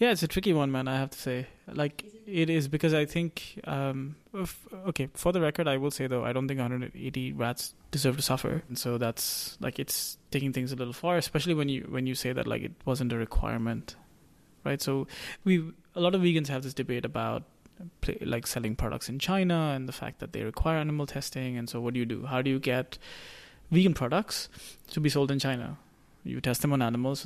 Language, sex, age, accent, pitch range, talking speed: English, male, 20-39, Indian, 120-150 Hz, 225 wpm